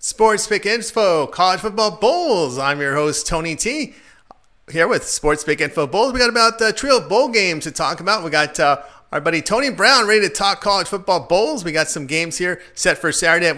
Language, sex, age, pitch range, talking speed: English, male, 30-49, 155-200 Hz, 220 wpm